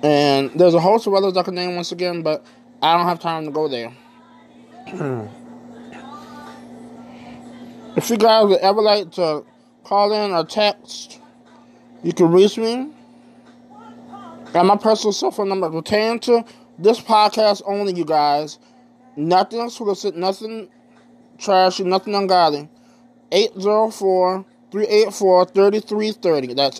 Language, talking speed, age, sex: English, 120 wpm, 20-39, male